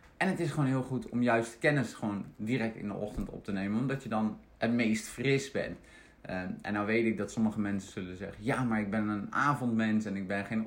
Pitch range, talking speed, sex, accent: 105-130 Hz, 245 wpm, male, Dutch